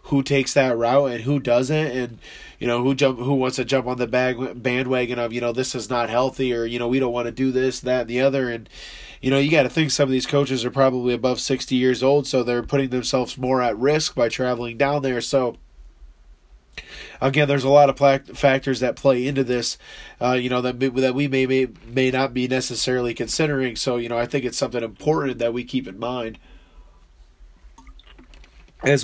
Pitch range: 120-135 Hz